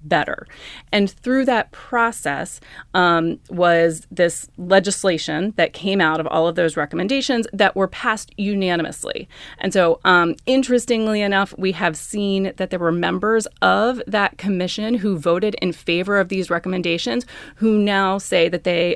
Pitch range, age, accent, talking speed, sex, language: 170-210 Hz, 30-49, American, 150 wpm, female, English